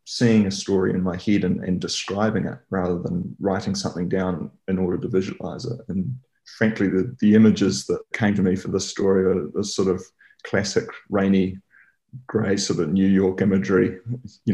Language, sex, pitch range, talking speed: English, male, 95-105 Hz, 185 wpm